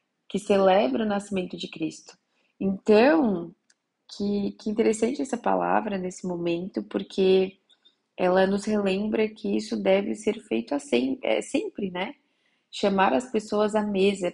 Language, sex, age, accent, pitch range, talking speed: Portuguese, female, 20-39, Brazilian, 180-215 Hz, 125 wpm